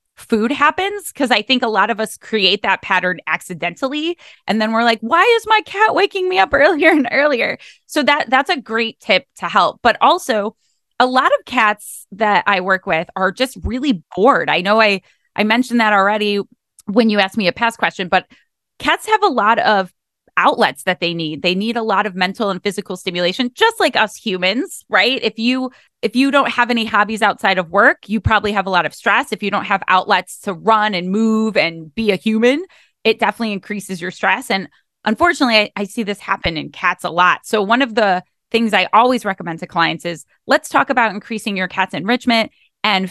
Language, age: English, 20-39